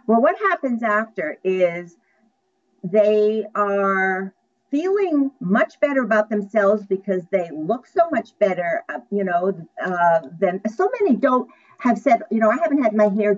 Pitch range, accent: 195-260 Hz, American